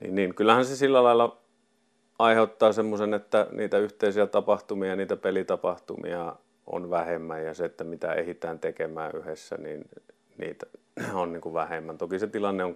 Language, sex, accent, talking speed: Finnish, male, native, 150 wpm